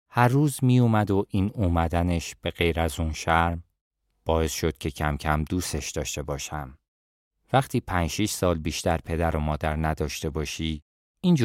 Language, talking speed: Persian, 160 wpm